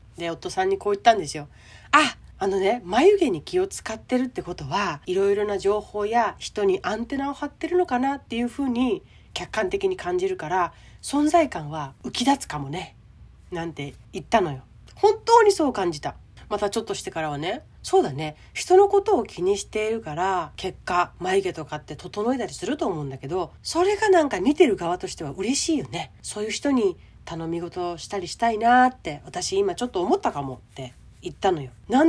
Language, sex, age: Japanese, female, 30-49